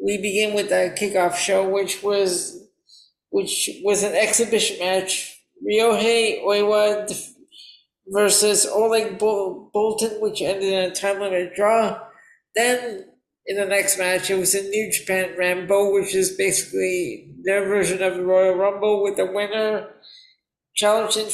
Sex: male